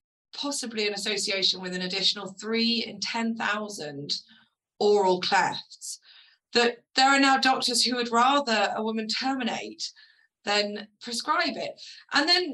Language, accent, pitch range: English, British, 205-270 Hz